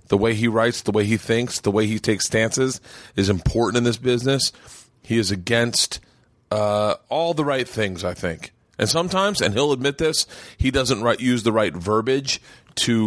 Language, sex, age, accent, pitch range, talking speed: English, male, 30-49, American, 100-125 Hz, 195 wpm